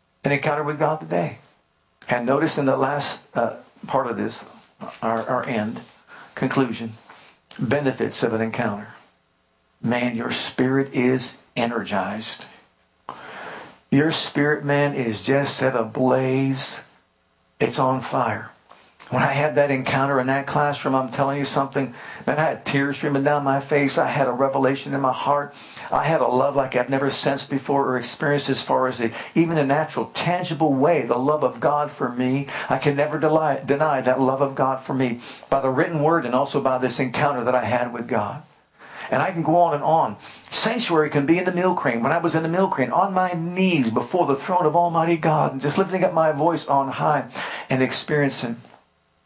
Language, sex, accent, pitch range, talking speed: English, male, American, 130-150 Hz, 190 wpm